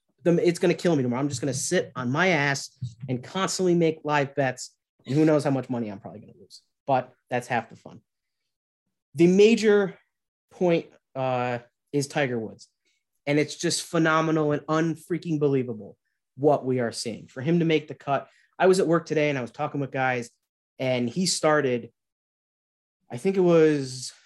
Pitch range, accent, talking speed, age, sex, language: 130-165 Hz, American, 190 wpm, 20-39, male, English